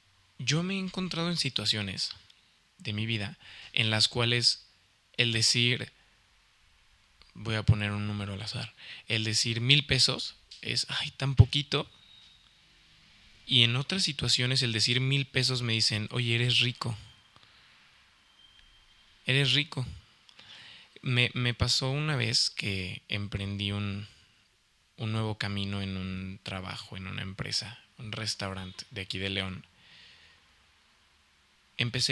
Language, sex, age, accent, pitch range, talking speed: Spanish, male, 20-39, Mexican, 100-125 Hz, 125 wpm